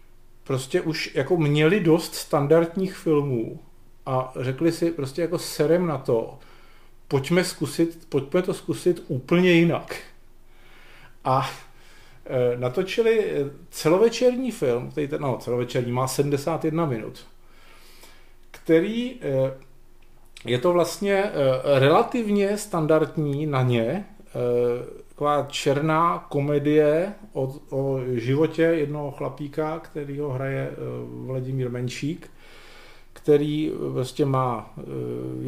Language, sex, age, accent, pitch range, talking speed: Czech, male, 40-59, native, 125-165 Hz, 95 wpm